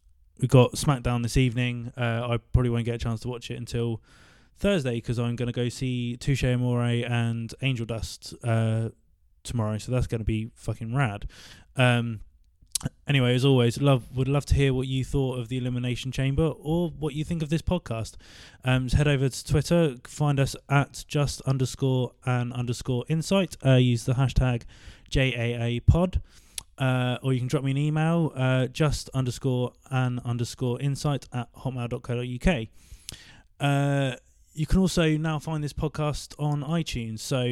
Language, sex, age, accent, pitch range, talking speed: English, male, 20-39, British, 120-140 Hz, 170 wpm